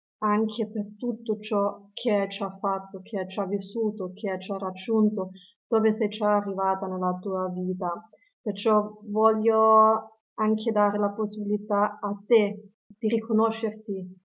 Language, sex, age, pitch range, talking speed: Italian, female, 30-49, 190-225 Hz, 140 wpm